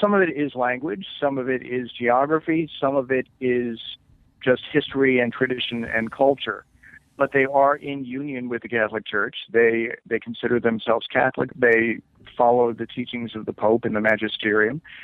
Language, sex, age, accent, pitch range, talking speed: English, male, 50-69, American, 115-125 Hz, 175 wpm